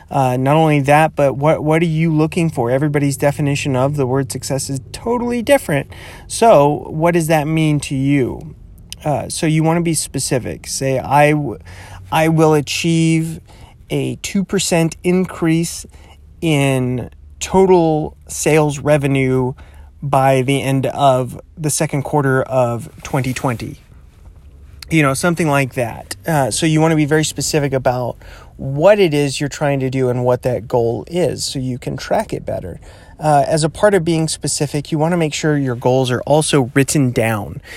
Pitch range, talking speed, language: 130-155 Hz, 165 wpm, English